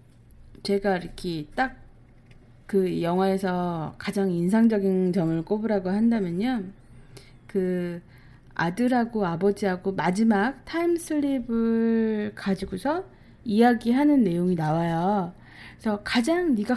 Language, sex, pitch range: Korean, female, 175-250 Hz